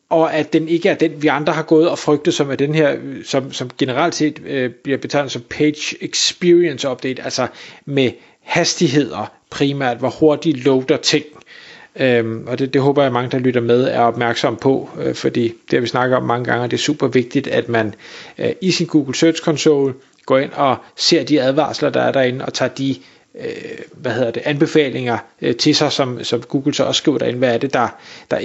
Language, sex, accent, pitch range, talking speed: Danish, male, native, 130-175 Hz, 215 wpm